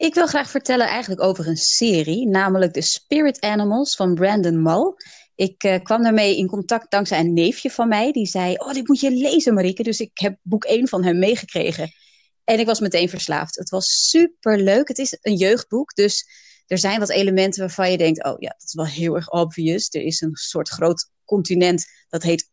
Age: 30-49